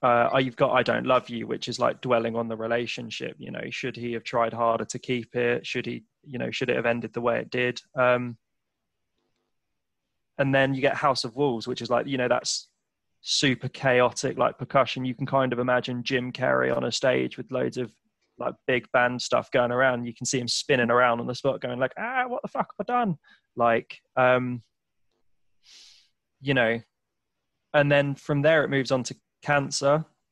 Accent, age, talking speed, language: British, 20-39, 205 wpm, English